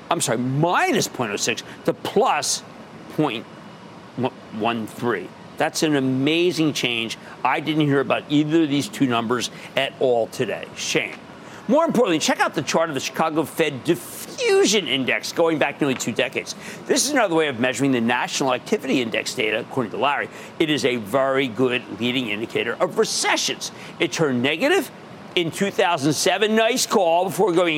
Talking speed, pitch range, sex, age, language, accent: 160 wpm, 140-200 Hz, male, 50-69, English, American